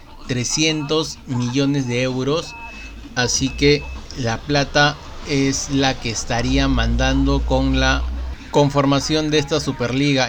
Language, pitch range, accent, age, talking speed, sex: Spanish, 120-145 Hz, Mexican, 30-49, 110 wpm, male